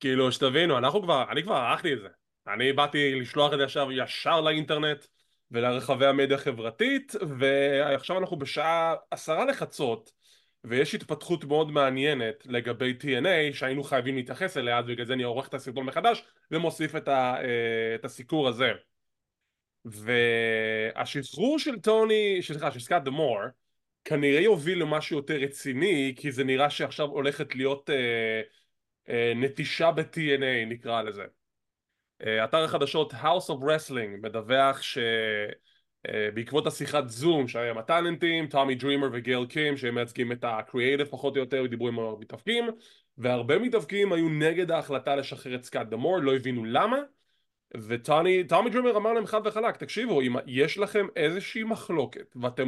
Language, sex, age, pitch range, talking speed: English, male, 20-39, 125-165 Hz, 130 wpm